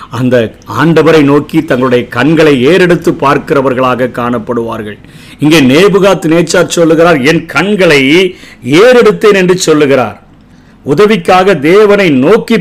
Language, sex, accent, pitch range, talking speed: Tamil, male, native, 135-175 Hz, 95 wpm